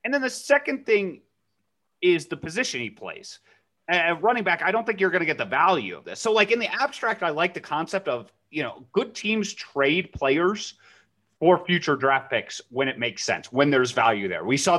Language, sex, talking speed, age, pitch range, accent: English, male, 220 wpm, 30-49, 130-205 Hz, American